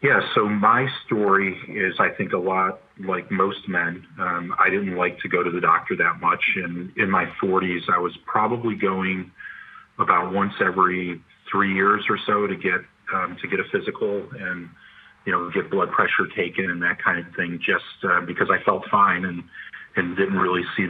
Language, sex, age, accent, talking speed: English, male, 40-59, American, 195 wpm